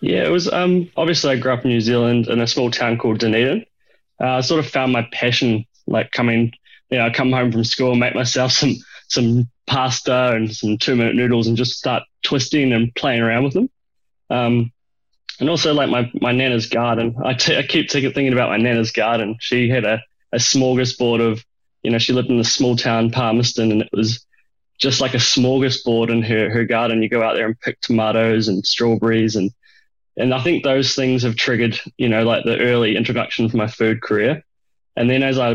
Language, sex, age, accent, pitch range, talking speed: English, male, 20-39, Australian, 115-130 Hz, 210 wpm